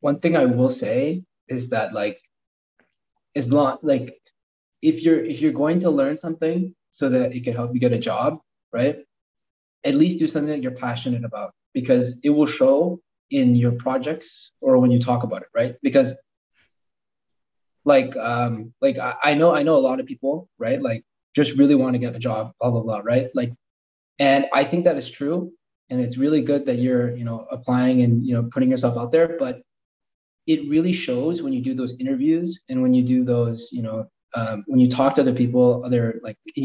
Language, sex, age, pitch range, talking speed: English, male, 20-39, 120-145 Hz, 205 wpm